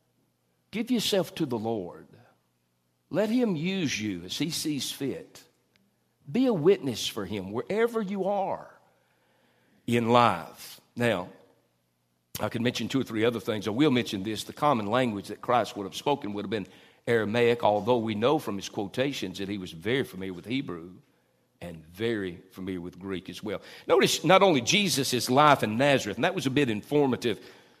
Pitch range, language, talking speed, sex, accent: 110-155 Hz, English, 175 wpm, male, American